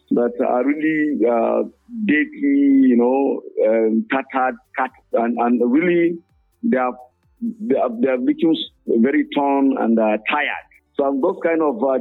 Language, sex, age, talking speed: English, male, 50-69, 145 wpm